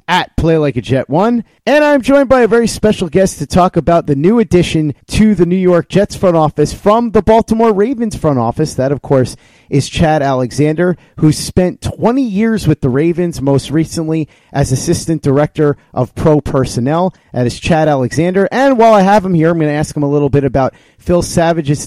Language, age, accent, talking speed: English, 30-49, American, 205 wpm